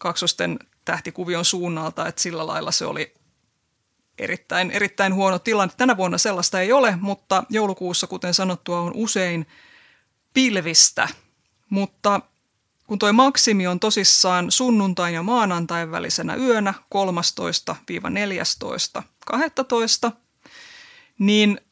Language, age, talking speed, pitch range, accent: Finnish, 20-39, 105 wpm, 180-220 Hz, native